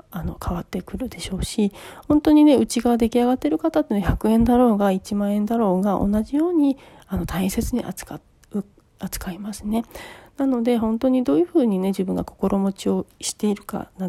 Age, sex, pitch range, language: 40-59, female, 200-255 Hz, Japanese